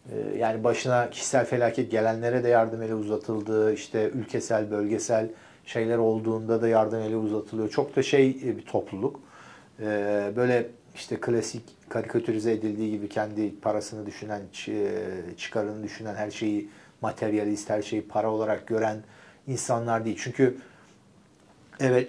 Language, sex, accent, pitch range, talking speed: Turkish, male, native, 110-140 Hz, 125 wpm